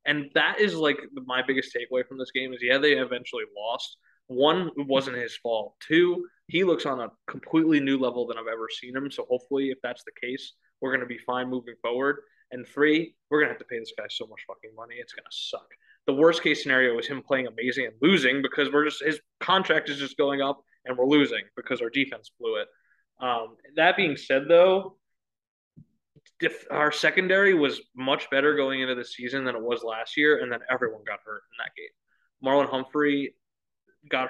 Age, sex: 20-39, male